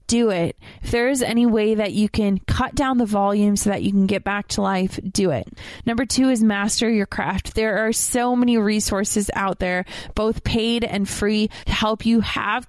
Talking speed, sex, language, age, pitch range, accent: 215 wpm, female, English, 20-39, 195-225 Hz, American